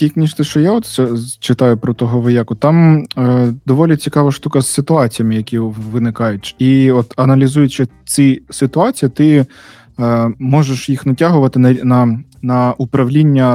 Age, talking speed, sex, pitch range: 20-39, 140 wpm, male, 120-145 Hz